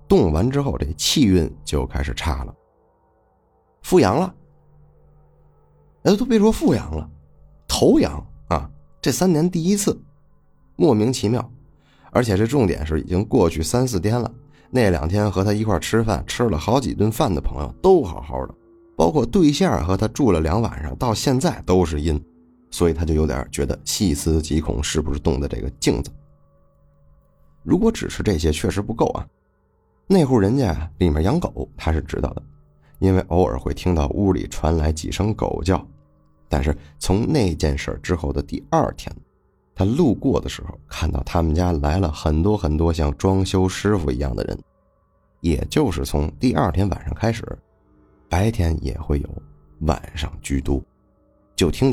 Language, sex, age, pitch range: Chinese, male, 30-49, 75-105 Hz